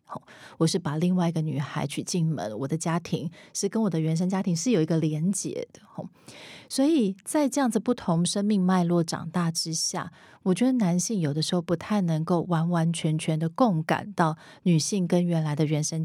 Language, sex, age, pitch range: Chinese, female, 30-49, 160-190 Hz